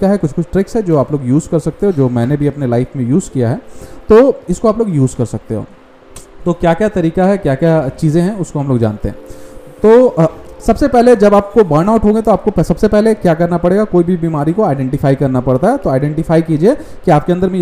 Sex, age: male, 30-49